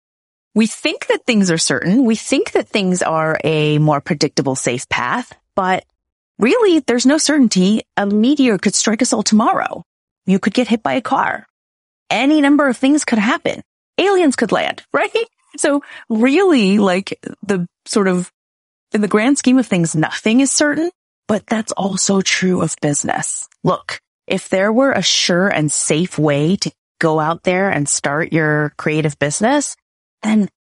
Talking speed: 165 wpm